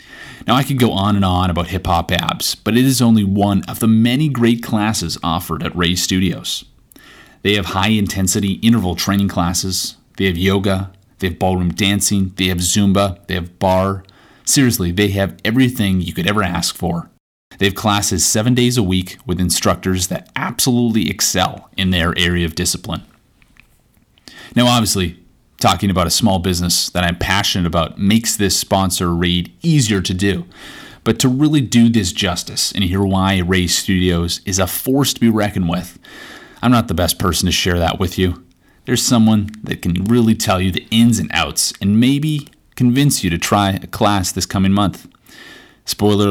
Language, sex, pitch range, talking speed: English, male, 90-110 Hz, 180 wpm